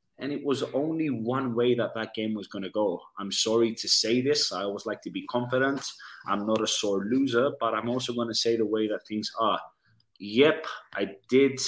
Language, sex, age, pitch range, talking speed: English, male, 20-39, 105-125 Hz, 220 wpm